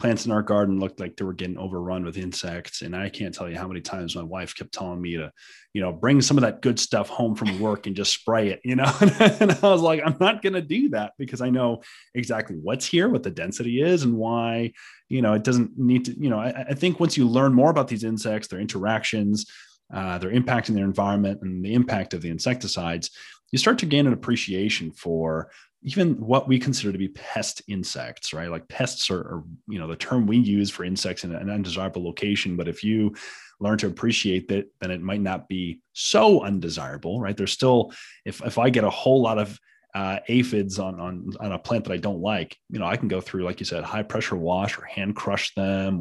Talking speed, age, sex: 235 wpm, 30-49, male